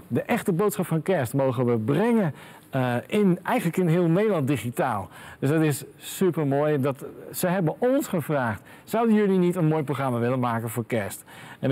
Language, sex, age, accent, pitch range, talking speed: Dutch, male, 50-69, Dutch, 140-190 Hz, 175 wpm